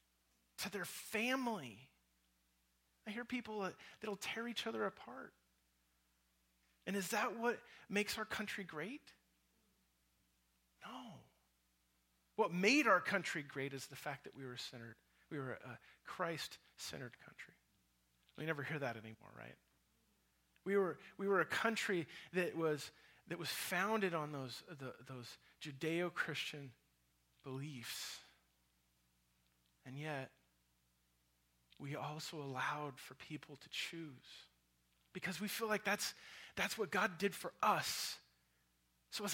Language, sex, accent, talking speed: English, male, American, 130 wpm